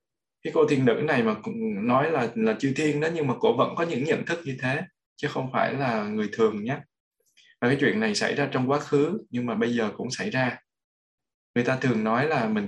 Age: 20-39